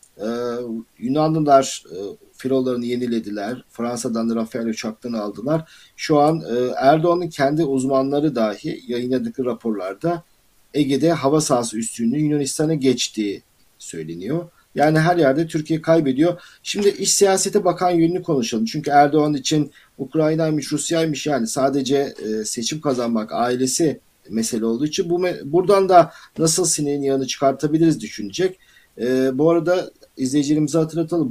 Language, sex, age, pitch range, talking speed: Turkish, male, 50-69, 115-160 Hz, 125 wpm